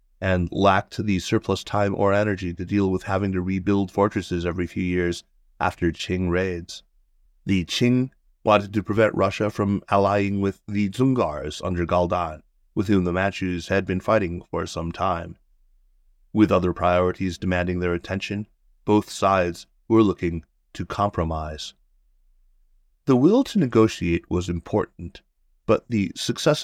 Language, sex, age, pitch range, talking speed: English, male, 30-49, 90-105 Hz, 145 wpm